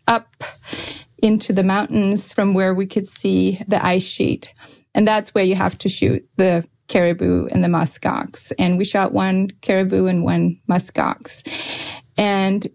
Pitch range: 190-235 Hz